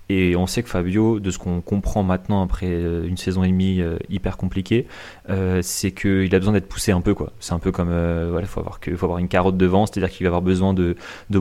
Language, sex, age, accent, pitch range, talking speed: French, male, 20-39, French, 90-100 Hz, 245 wpm